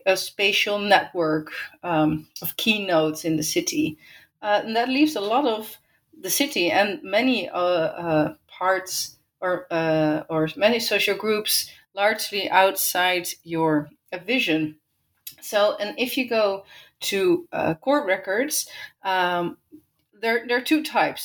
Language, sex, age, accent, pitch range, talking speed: English, female, 30-49, Dutch, 170-235 Hz, 140 wpm